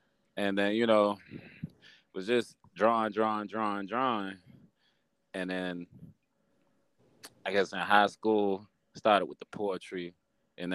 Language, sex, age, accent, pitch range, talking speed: English, male, 20-39, American, 95-135 Hz, 130 wpm